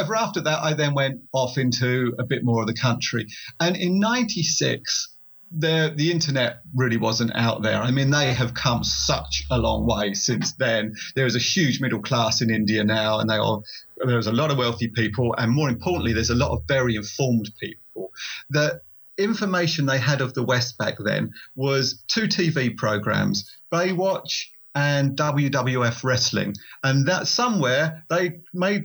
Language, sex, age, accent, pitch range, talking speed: English, male, 40-59, British, 120-160 Hz, 170 wpm